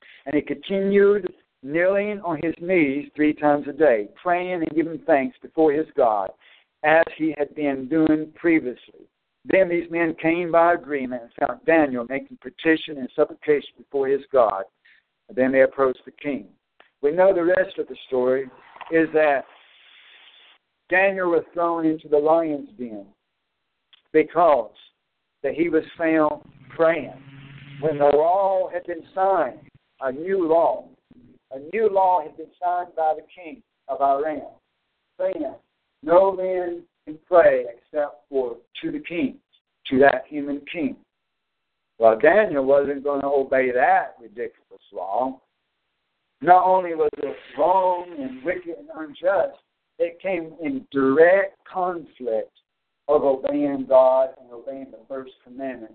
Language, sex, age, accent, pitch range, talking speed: English, male, 60-79, American, 140-190 Hz, 140 wpm